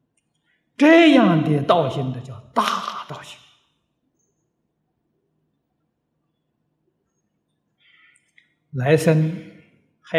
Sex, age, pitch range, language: male, 60-79, 150-200 Hz, Chinese